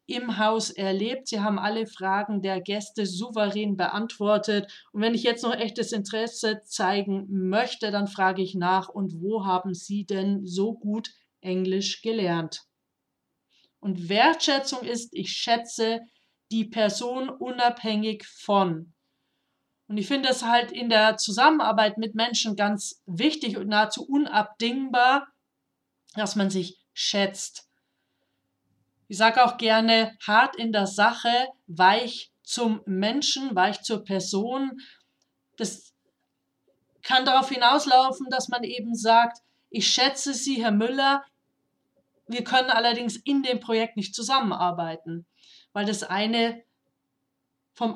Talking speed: 125 wpm